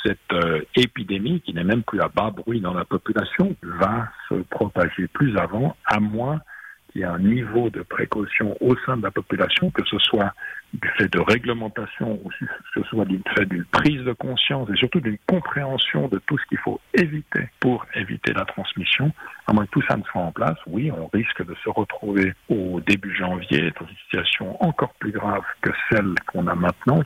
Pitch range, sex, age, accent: 95-125 Hz, male, 60-79, French